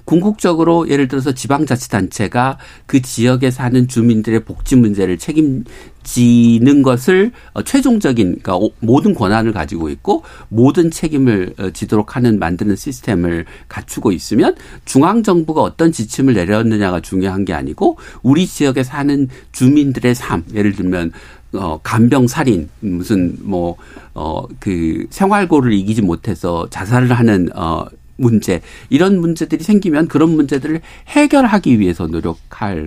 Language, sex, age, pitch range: Korean, male, 60-79, 100-145 Hz